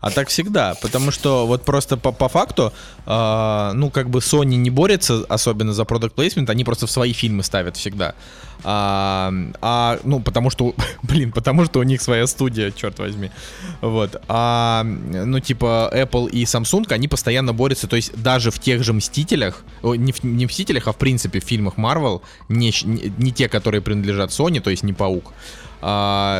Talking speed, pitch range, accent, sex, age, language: 185 wpm, 105-130 Hz, native, male, 20-39, Russian